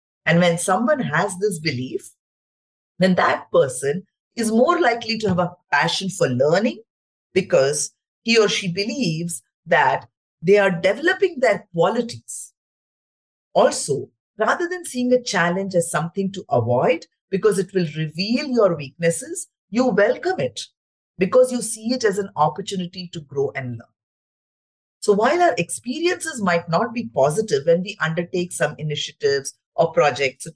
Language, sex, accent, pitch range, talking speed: English, female, Indian, 160-235 Hz, 145 wpm